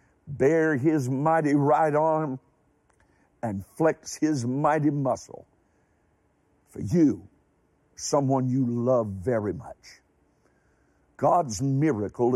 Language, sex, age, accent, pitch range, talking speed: English, male, 60-79, American, 125-155 Hz, 90 wpm